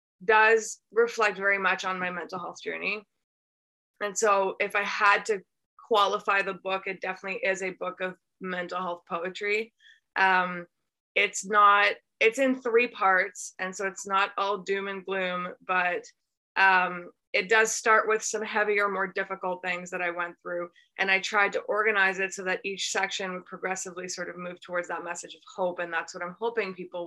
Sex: female